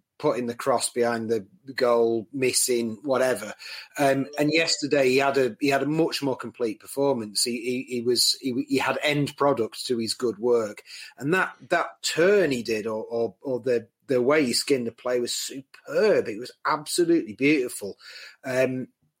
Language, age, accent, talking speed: English, 30-49, British, 180 wpm